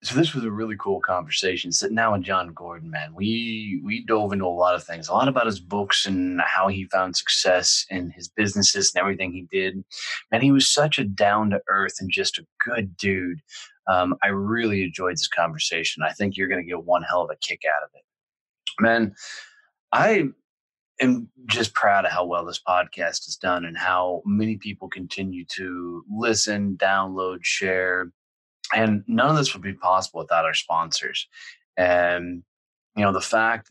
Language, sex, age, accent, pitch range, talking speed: English, male, 20-39, American, 90-105 Hz, 190 wpm